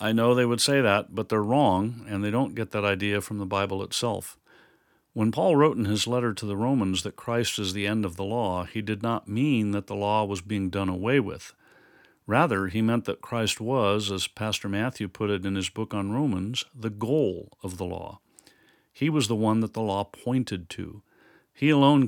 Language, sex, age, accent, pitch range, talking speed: English, male, 50-69, American, 105-130 Hz, 215 wpm